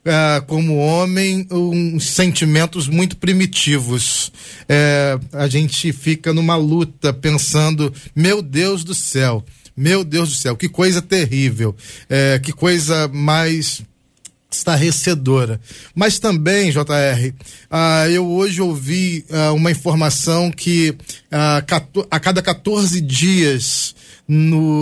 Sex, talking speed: male, 105 wpm